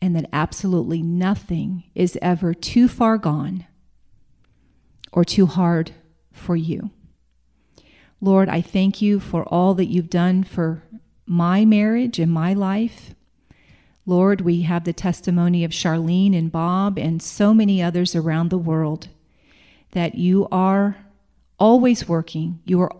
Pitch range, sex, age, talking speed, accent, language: 175-210 Hz, female, 40-59, 135 wpm, American, English